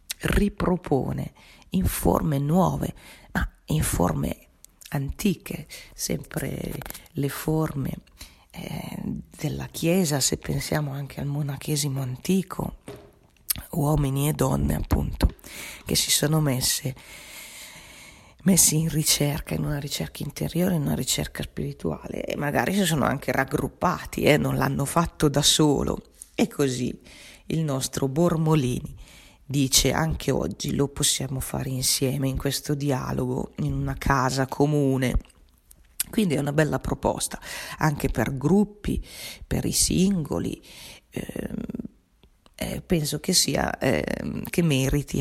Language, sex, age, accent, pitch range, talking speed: Italian, female, 40-59, native, 135-160 Hz, 120 wpm